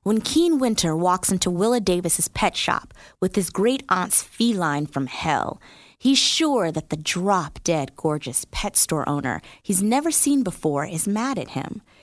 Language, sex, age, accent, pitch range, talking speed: English, female, 20-39, American, 160-220 Hz, 165 wpm